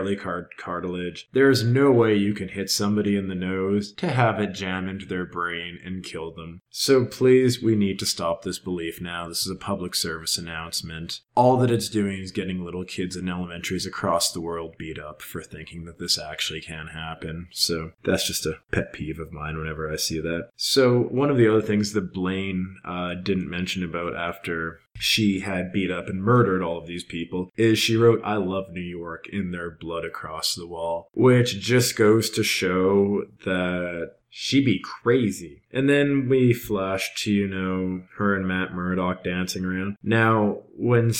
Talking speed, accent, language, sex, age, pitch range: 190 wpm, American, English, male, 20-39, 85-105 Hz